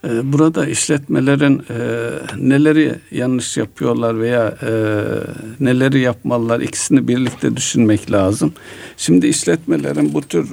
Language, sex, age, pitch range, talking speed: Turkish, male, 60-79, 110-145 Hz, 105 wpm